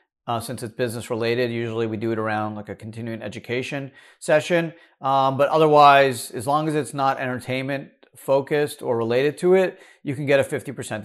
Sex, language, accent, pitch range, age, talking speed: male, English, American, 125-165 Hz, 40-59, 185 wpm